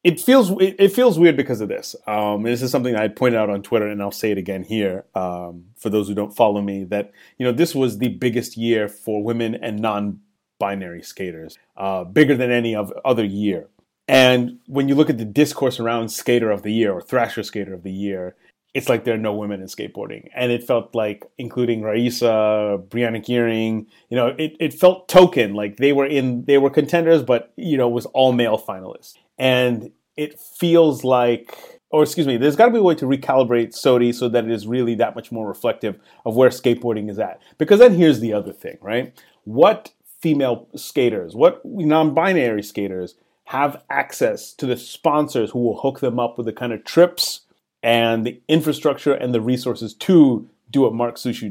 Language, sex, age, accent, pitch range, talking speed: English, male, 30-49, American, 105-140 Hz, 205 wpm